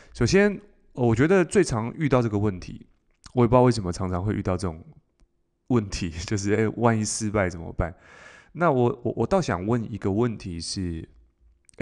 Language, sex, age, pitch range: Chinese, male, 20-39, 95-120 Hz